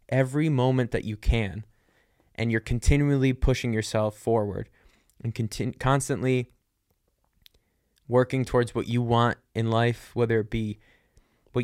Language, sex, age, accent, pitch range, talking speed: English, male, 20-39, American, 105-120 Hz, 125 wpm